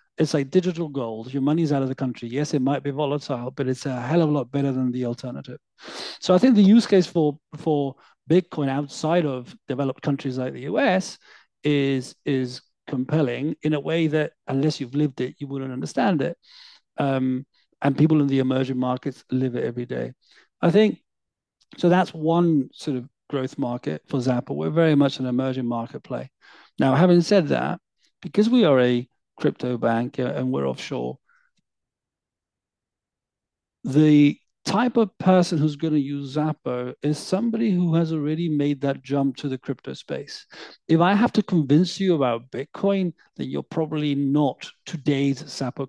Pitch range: 130-165 Hz